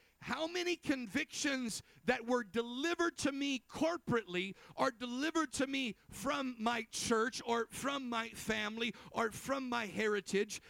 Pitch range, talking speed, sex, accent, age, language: 185-235 Hz, 135 wpm, male, American, 50-69, English